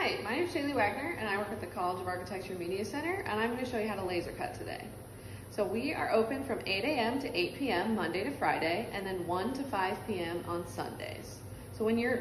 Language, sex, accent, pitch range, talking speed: English, female, American, 175-225 Hz, 250 wpm